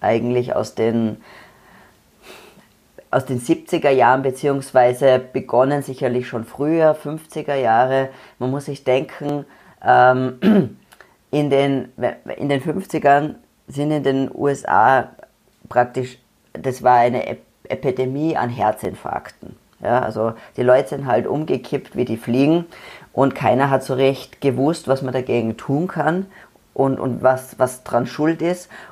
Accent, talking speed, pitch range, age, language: German, 120 wpm, 125-140 Hz, 30-49, German